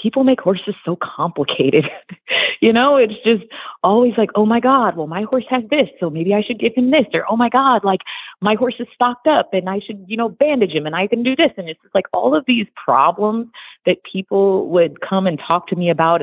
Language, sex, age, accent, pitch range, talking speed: English, female, 30-49, American, 150-225 Hz, 240 wpm